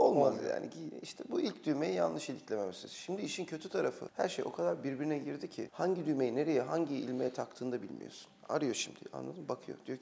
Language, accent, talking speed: Turkish, native, 200 wpm